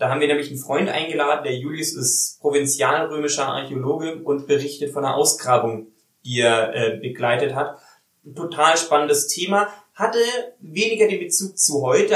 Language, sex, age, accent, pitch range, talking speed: German, male, 20-39, German, 130-165 Hz, 155 wpm